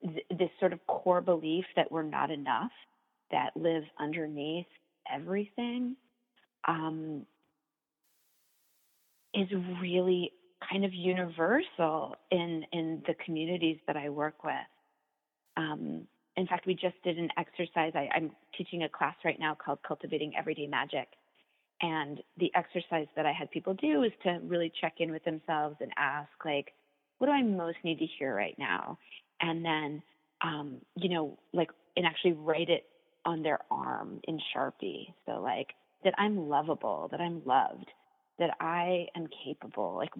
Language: English